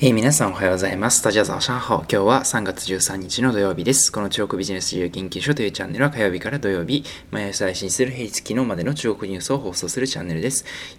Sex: male